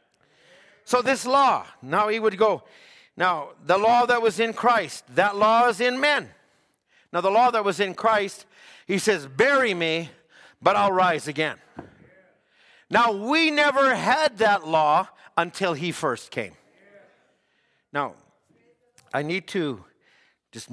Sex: male